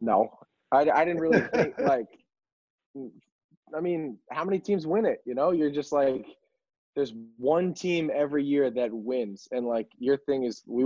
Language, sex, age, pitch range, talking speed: English, male, 20-39, 120-145 Hz, 170 wpm